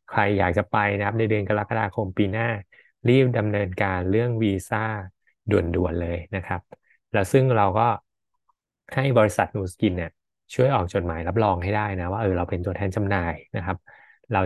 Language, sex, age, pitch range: Thai, male, 20-39, 95-115 Hz